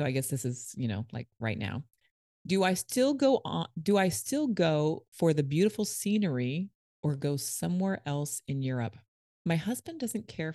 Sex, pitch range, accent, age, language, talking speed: female, 130-180 Hz, American, 30-49, English, 190 wpm